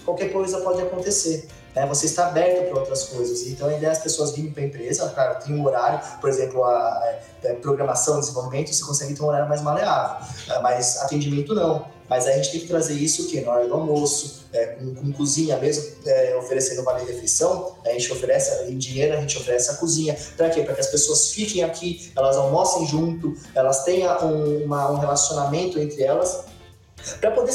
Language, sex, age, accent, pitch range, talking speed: Portuguese, male, 20-39, Brazilian, 140-175 Hz, 190 wpm